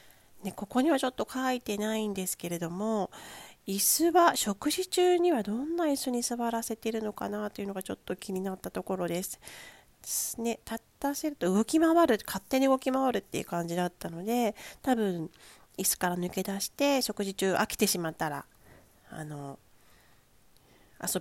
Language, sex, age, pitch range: Japanese, female, 40-59, 180-255 Hz